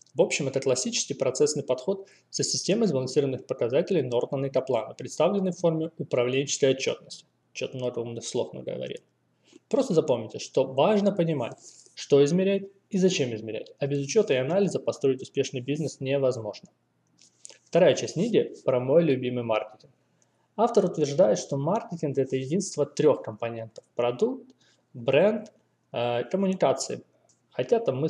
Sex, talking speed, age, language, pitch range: male, 140 wpm, 20-39, Russian, 130-170 Hz